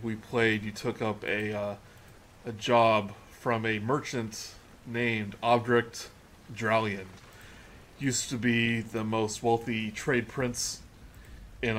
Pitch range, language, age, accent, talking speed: 105-120 Hz, English, 20-39, American, 120 wpm